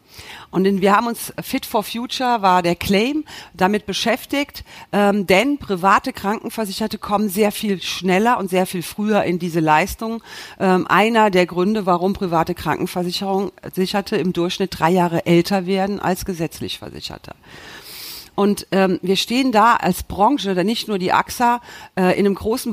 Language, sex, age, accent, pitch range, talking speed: German, female, 40-59, German, 175-215 Hz, 160 wpm